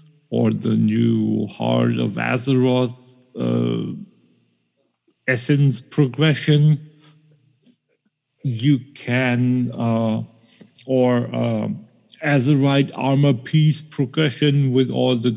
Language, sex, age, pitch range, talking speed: English, male, 50-69, 120-145 Hz, 80 wpm